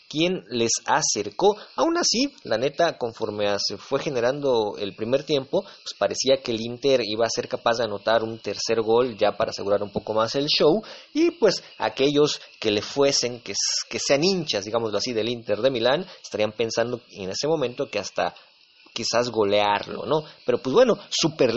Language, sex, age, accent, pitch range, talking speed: English, male, 30-49, Mexican, 110-155 Hz, 185 wpm